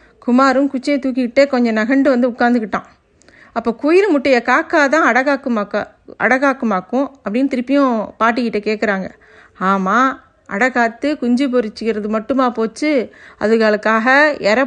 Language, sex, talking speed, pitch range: Tamil, female, 110 wpm, 215-265 Hz